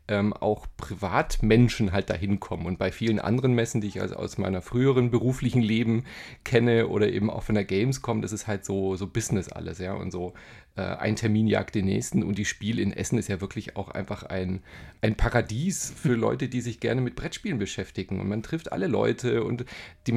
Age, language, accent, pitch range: 30-49, German, German, 100-125 Hz